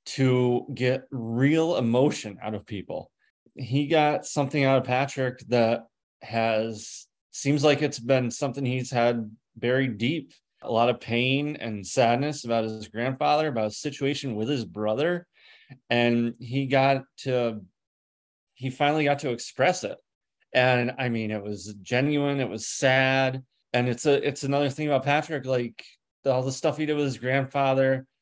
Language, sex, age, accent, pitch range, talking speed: English, male, 20-39, American, 115-135 Hz, 160 wpm